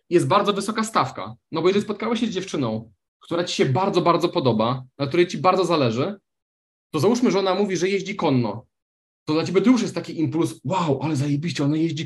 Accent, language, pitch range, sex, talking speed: native, Polish, 140-190 Hz, male, 215 wpm